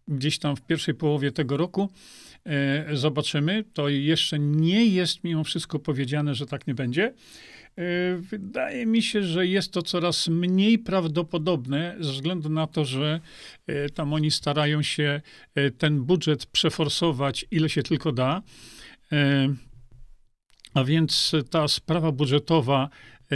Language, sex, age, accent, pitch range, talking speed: Polish, male, 40-59, native, 145-175 Hz, 125 wpm